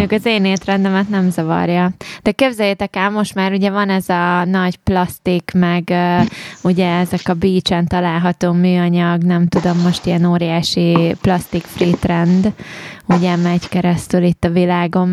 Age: 20-39